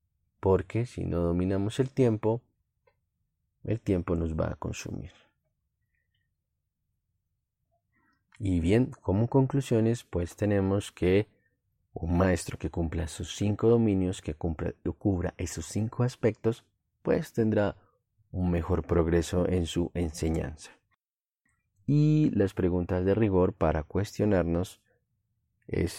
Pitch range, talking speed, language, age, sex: 85-110 Hz, 110 wpm, Spanish, 30-49, male